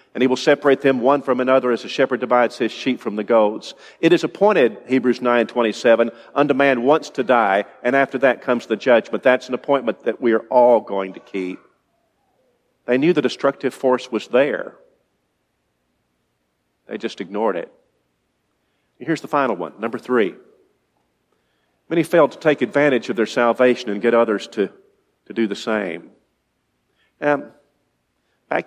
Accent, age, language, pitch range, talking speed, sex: American, 50-69, English, 110-135 Hz, 165 wpm, male